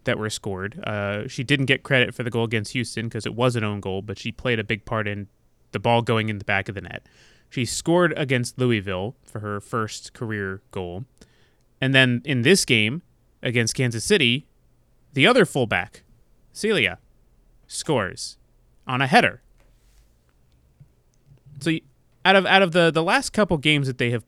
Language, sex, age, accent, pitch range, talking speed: English, male, 20-39, American, 105-140 Hz, 180 wpm